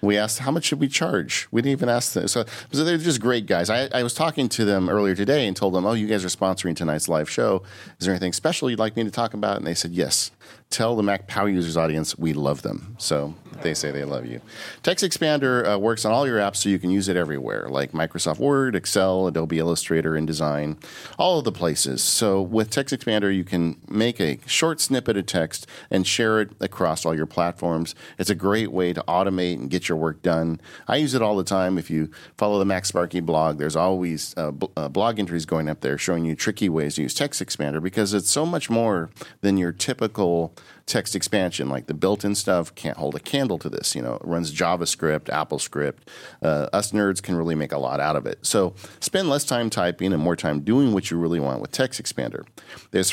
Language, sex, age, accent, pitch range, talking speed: English, male, 40-59, American, 80-110 Hz, 230 wpm